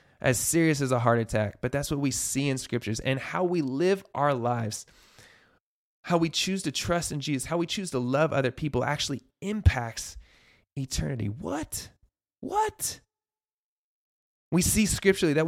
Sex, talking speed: male, 165 wpm